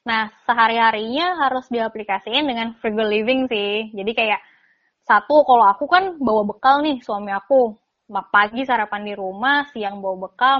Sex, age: female, 20-39